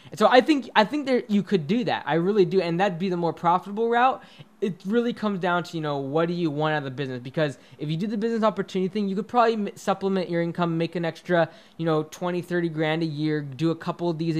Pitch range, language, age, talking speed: 145-185 Hz, English, 20-39, 265 wpm